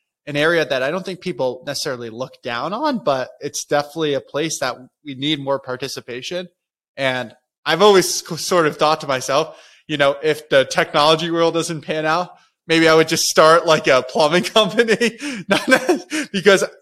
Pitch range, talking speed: 125-155 Hz, 170 wpm